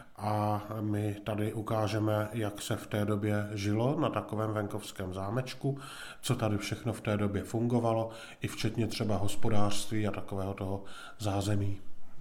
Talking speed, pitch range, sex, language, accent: 145 wpm, 105-120 Hz, male, Czech, native